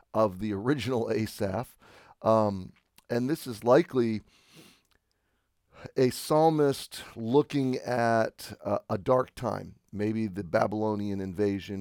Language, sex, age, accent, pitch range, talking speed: English, male, 40-59, American, 110-135 Hz, 105 wpm